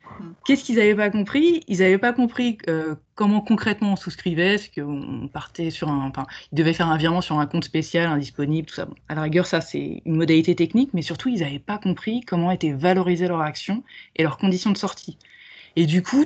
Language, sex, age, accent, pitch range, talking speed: French, female, 20-39, French, 160-210 Hz, 225 wpm